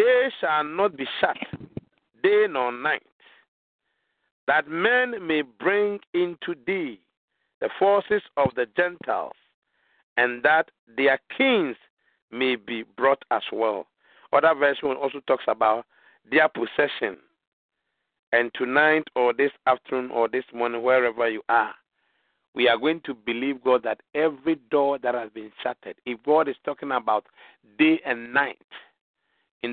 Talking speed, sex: 135 wpm, male